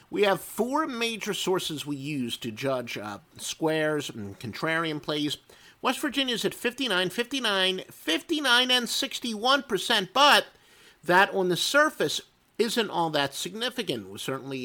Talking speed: 135 wpm